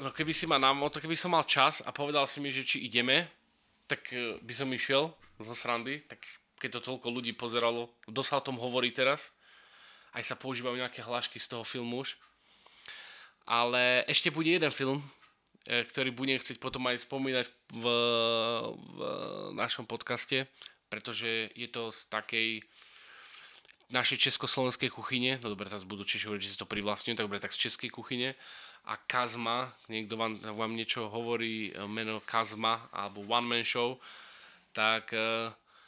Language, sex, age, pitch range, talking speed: Slovak, male, 20-39, 105-125 Hz, 155 wpm